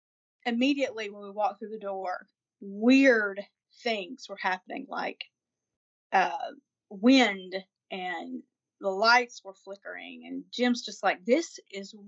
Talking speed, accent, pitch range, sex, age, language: 125 wpm, American, 205-275 Hz, female, 40-59, English